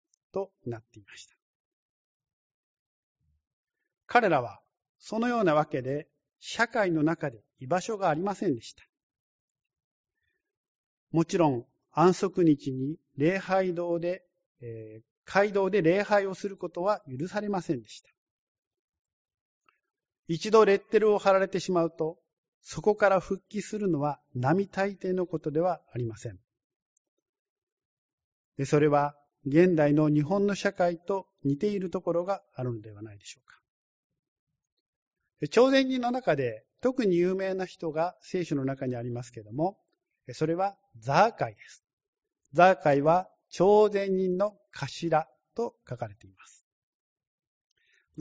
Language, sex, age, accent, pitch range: Japanese, male, 50-69, native, 145-200 Hz